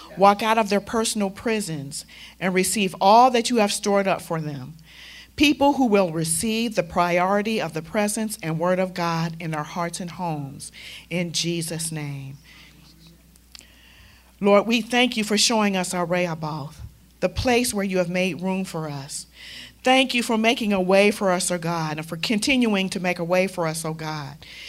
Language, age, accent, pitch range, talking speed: English, 50-69, American, 165-220 Hz, 190 wpm